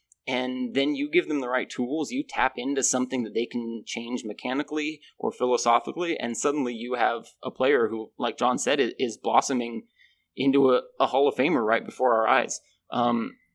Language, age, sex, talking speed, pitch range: English, 20-39, male, 185 wpm, 120-145 Hz